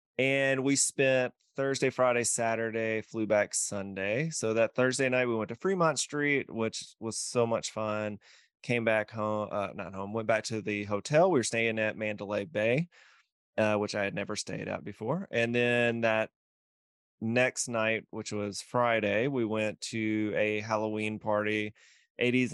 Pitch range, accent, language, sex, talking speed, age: 105-130 Hz, American, English, male, 170 wpm, 20-39